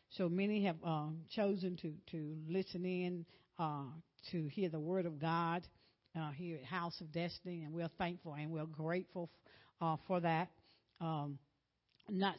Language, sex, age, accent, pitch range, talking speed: English, female, 60-79, American, 165-200 Hz, 165 wpm